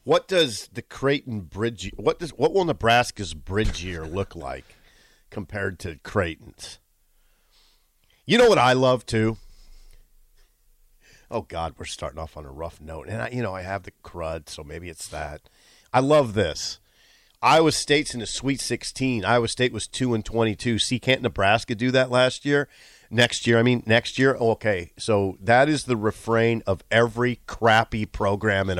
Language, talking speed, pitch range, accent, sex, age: English, 175 wpm, 95-125 Hz, American, male, 40-59